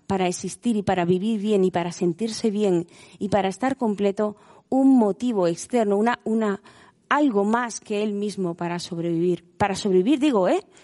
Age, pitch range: 30-49, 185-235 Hz